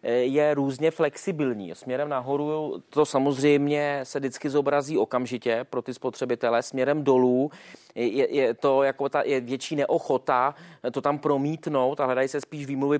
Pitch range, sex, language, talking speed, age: 130-155 Hz, male, Czech, 150 wpm, 30-49